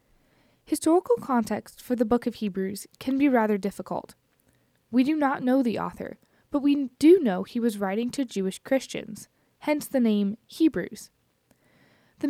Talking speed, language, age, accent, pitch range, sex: 155 wpm, English, 20-39, American, 200-255 Hz, female